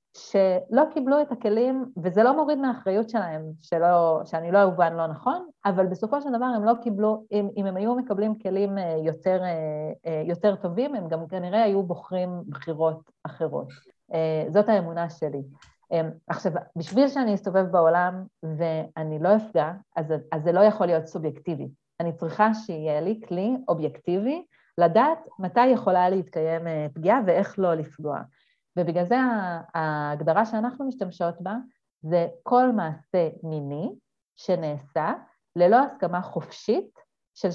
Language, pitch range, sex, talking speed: Hebrew, 165-225 Hz, female, 135 wpm